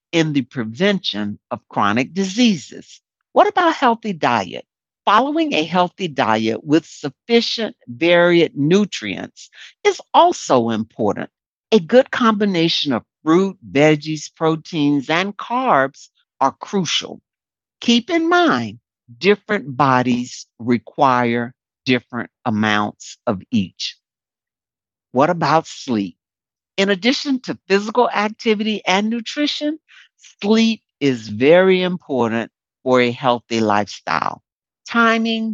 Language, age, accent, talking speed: English, 60-79, American, 105 wpm